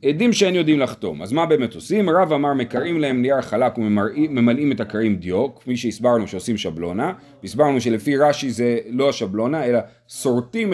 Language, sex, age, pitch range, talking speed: Hebrew, male, 30-49, 120-160 Hz, 170 wpm